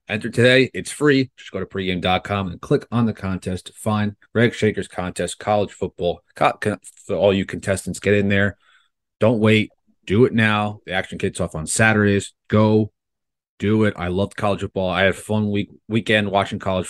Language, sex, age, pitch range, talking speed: English, male, 30-49, 95-115 Hz, 185 wpm